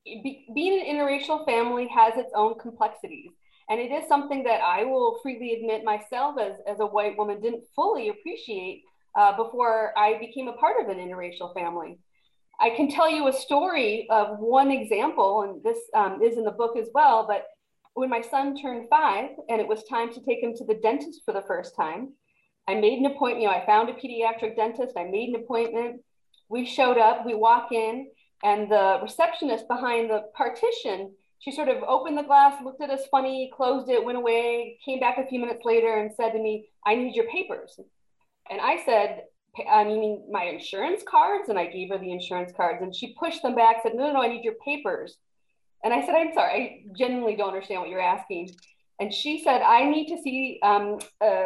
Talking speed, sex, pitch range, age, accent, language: 205 wpm, female, 220-290 Hz, 40-59, American, English